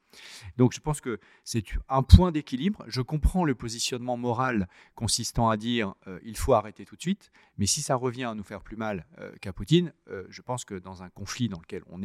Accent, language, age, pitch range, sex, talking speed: French, French, 40-59, 105-145 Hz, male, 230 wpm